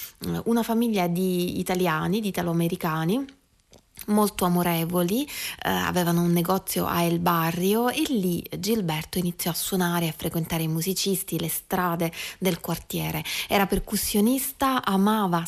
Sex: female